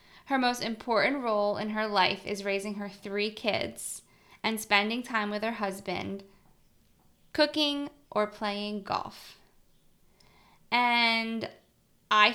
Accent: American